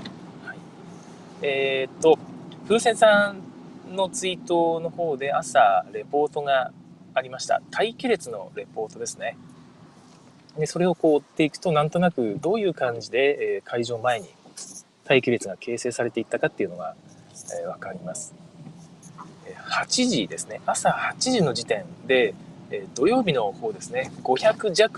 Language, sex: Japanese, male